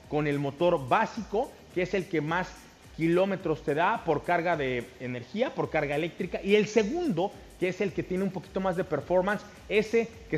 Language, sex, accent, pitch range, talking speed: Spanish, male, Mexican, 155-205 Hz, 195 wpm